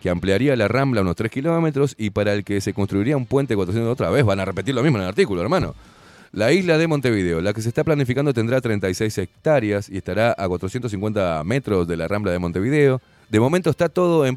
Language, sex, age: Spanish, male, 30-49